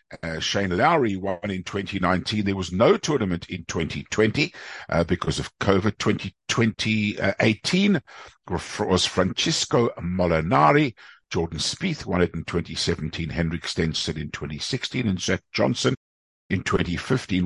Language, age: English, 60-79